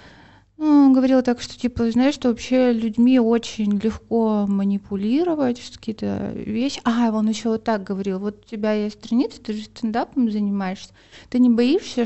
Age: 30-49